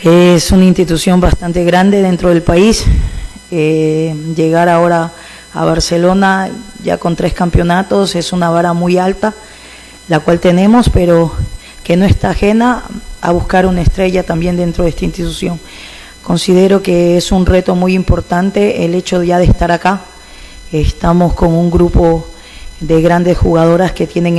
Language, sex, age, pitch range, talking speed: Spanish, female, 20-39, 170-185 Hz, 150 wpm